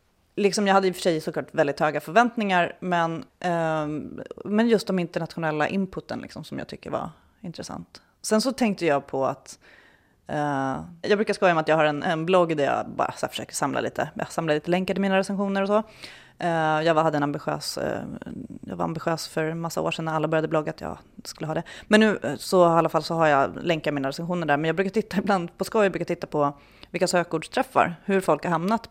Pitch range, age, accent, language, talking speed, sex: 155-200 Hz, 30-49, native, Swedish, 225 wpm, female